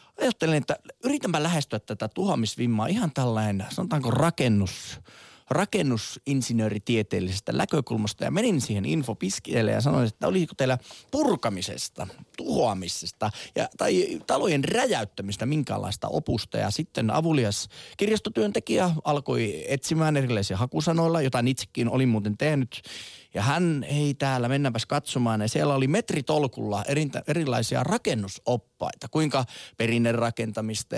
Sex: male